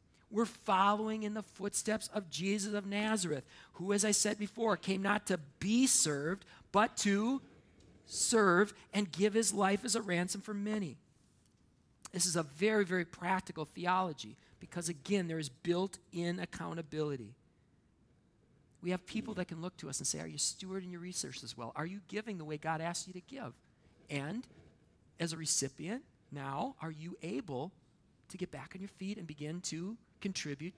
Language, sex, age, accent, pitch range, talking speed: English, male, 40-59, American, 155-200 Hz, 175 wpm